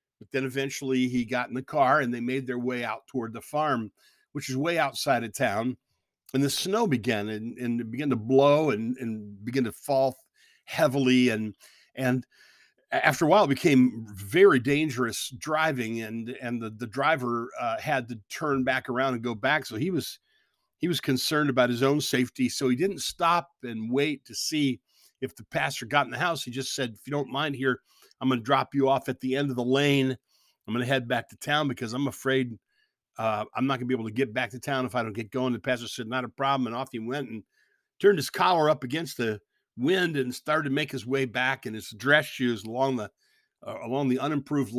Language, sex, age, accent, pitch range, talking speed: English, male, 50-69, American, 120-140 Hz, 230 wpm